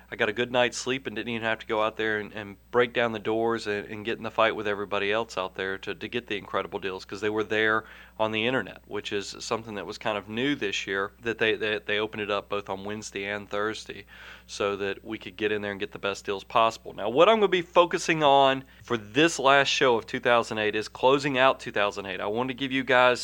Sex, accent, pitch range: male, American, 110-130 Hz